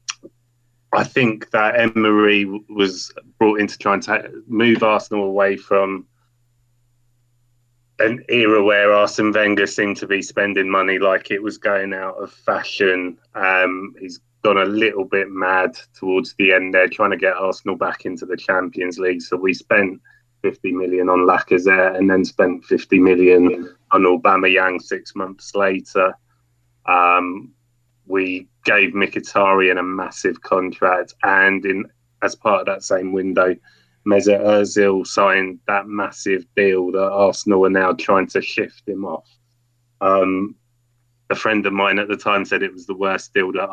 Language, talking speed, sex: English, 160 wpm, male